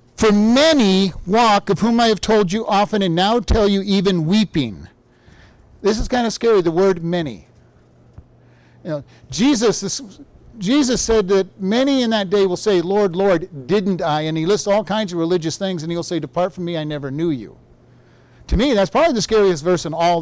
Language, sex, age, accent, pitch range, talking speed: English, male, 50-69, American, 170-215 Hz, 200 wpm